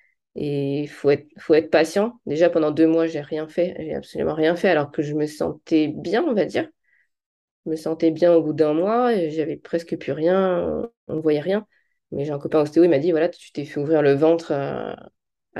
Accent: French